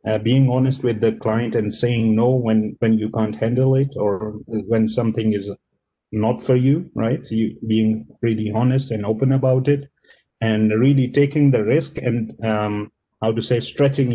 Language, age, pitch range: English, 30-49, 110-130 Hz